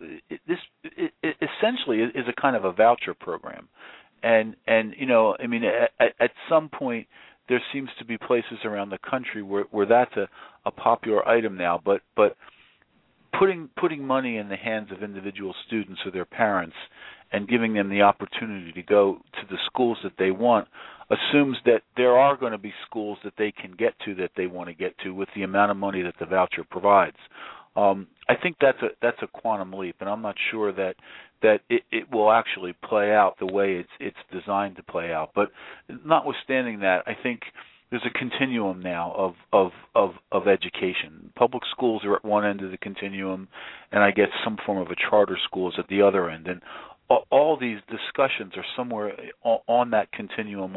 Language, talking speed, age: English, 195 wpm, 50-69